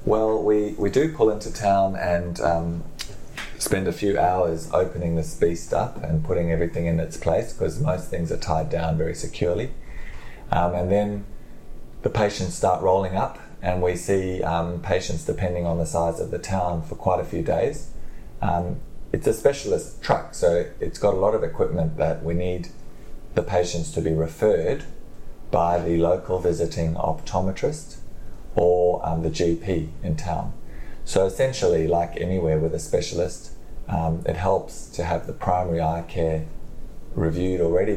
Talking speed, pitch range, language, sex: 165 wpm, 80-95 Hz, English, male